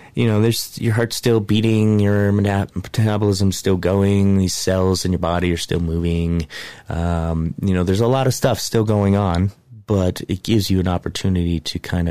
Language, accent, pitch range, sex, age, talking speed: English, American, 85-110 Hz, male, 30-49, 190 wpm